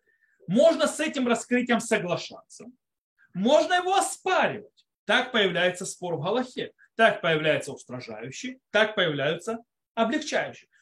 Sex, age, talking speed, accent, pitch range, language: male, 30-49, 105 wpm, native, 180-260 Hz, Russian